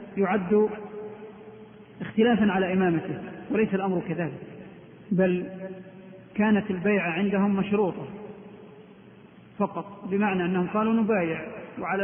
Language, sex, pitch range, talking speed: Arabic, male, 175-205 Hz, 90 wpm